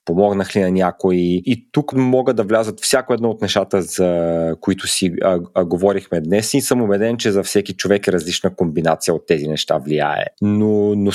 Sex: male